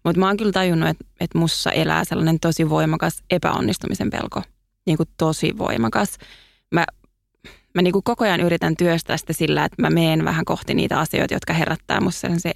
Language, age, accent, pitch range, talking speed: Finnish, 20-39, native, 115-180 Hz, 175 wpm